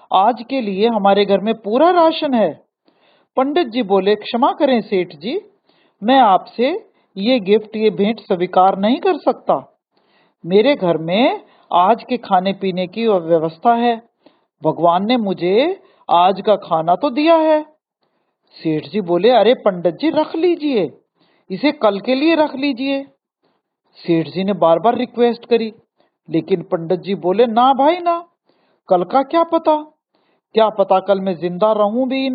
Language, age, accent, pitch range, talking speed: Hindi, 50-69, native, 190-275 Hz, 155 wpm